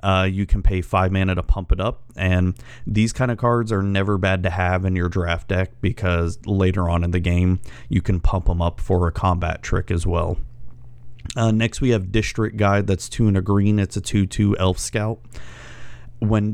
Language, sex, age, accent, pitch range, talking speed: English, male, 30-49, American, 90-110 Hz, 210 wpm